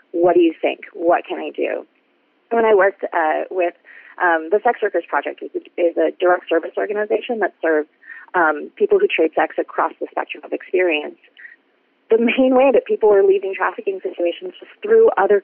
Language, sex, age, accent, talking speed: English, female, 30-49, American, 185 wpm